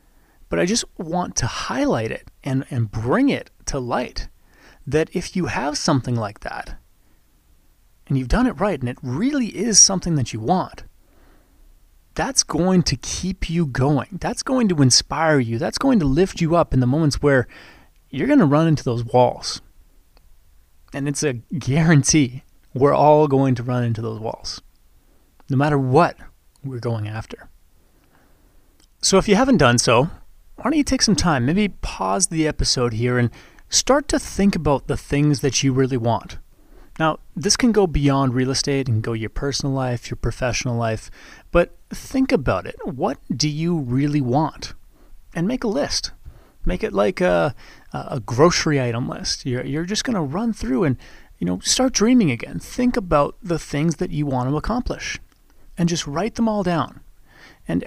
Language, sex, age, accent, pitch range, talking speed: English, male, 30-49, American, 125-185 Hz, 175 wpm